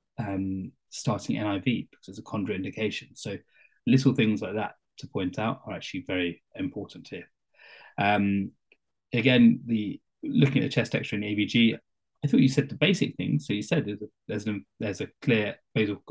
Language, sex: English, male